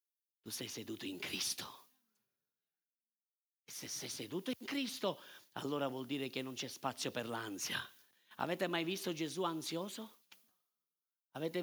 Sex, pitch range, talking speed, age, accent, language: male, 165-240 Hz, 135 wpm, 50-69, native, Italian